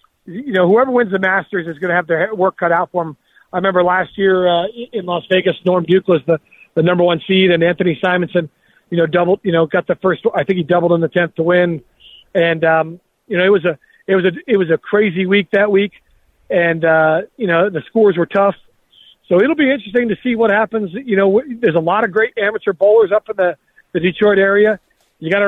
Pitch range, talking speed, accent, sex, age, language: 175-210 Hz, 245 wpm, American, male, 40-59, English